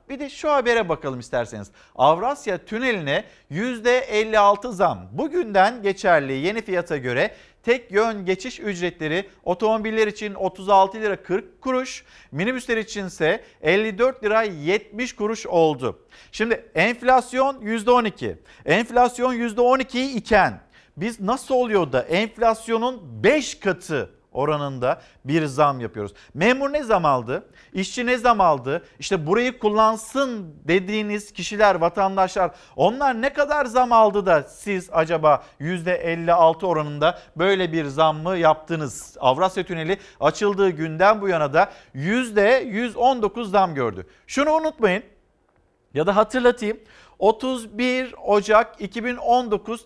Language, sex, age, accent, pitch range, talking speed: Turkish, male, 50-69, native, 170-240 Hz, 115 wpm